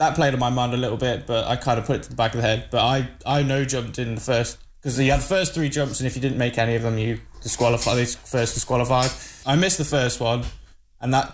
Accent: British